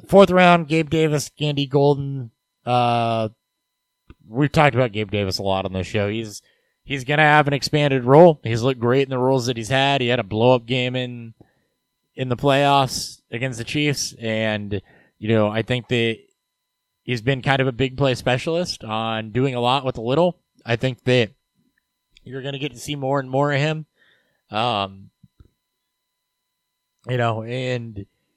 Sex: male